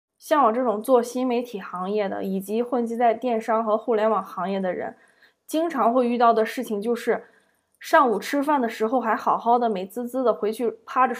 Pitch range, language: 215-255 Hz, Chinese